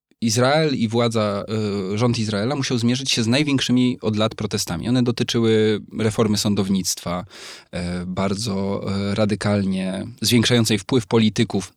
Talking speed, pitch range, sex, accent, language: 110 wpm, 95-120 Hz, male, native, Polish